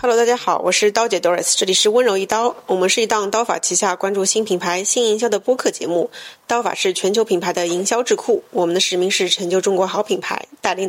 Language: Chinese